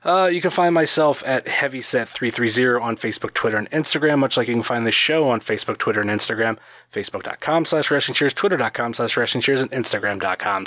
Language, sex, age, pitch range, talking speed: English, male, 30-49, 120-155 Hz, 190 wpm